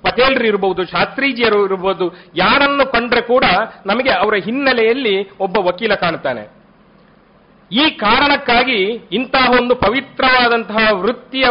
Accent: native